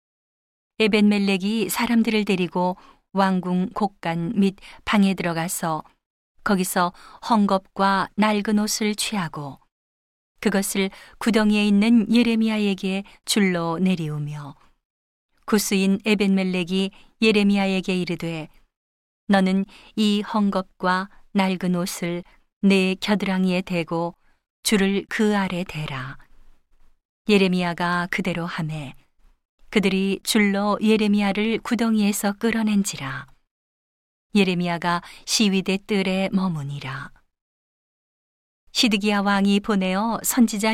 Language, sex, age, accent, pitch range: Korean, female, 40-59, native, 175-210 Hz